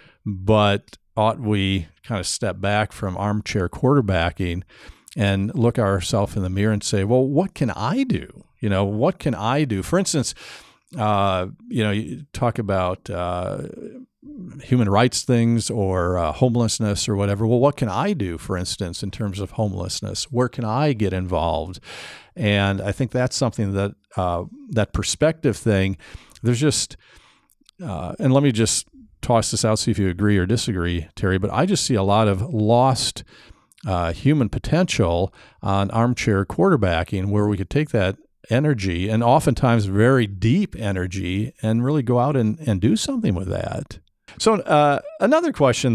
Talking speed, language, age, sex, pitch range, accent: 165 wpm, English, 50-69, male, 100-130 Hz, American